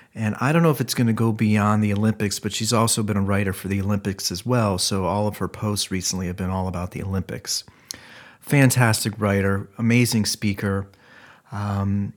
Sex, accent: male, American